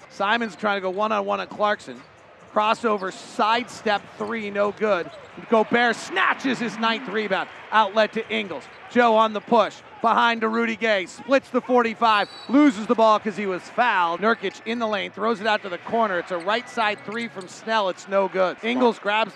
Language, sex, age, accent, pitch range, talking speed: English, male, 40-59, American, 195-265 Hz, 185 wpm